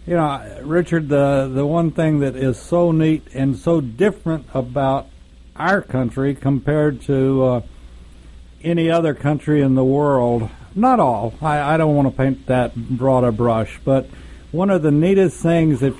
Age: 60-79